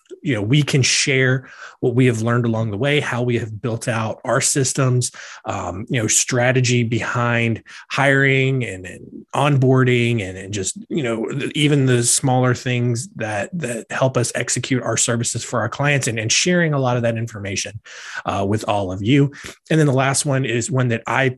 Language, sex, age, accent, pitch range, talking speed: English, male, 20-39, American, 115-135 Hz, 195 wpm